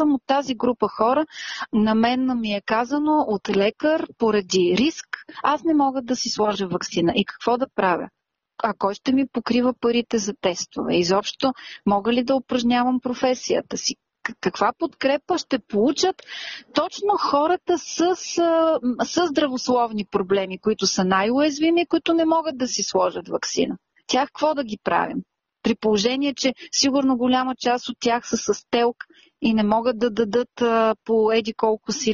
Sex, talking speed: female, 160 wpm